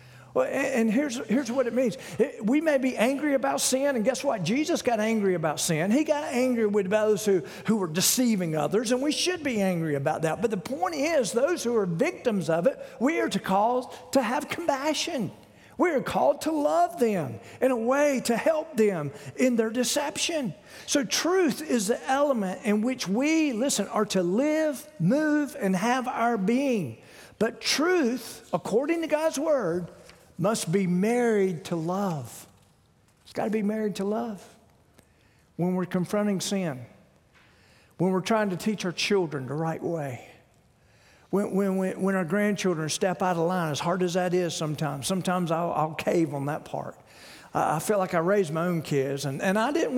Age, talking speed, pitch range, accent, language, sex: 50-69, 185 wpm, 175-265 Hz, American, English, male